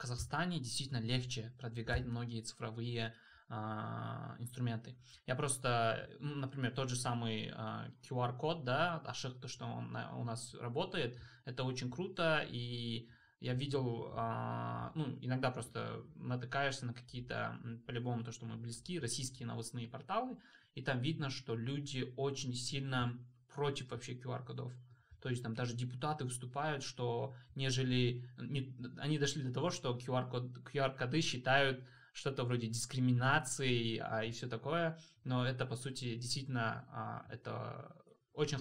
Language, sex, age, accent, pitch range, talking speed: Russian, male, 20-39, native, 120-135 Hz, 130 wpm